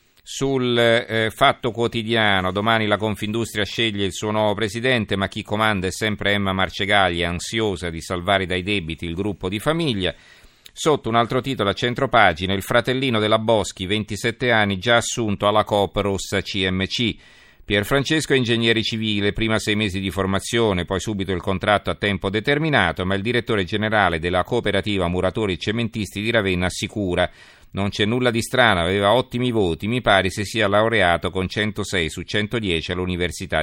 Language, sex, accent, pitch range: Italian, male, native, 95-115 Hz